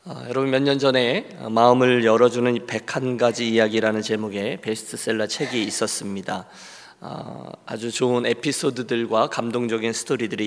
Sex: male